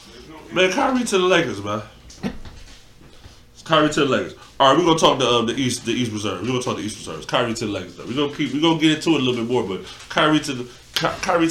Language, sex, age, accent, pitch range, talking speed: English, male, 20-39, American, 120-160 Hz, 290 wpm